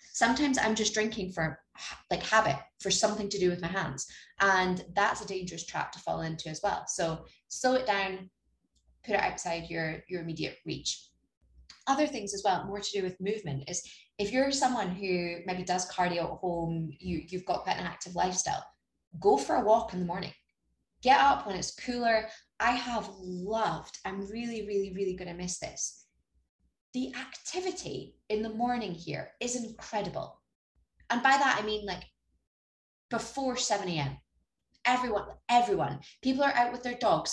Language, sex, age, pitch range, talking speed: English, female, 20-39, 170-235 Hz, 175 wpm